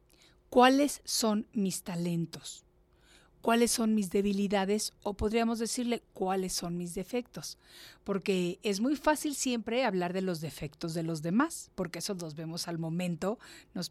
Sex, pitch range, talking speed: female, 175-235 Hz, 145 wpm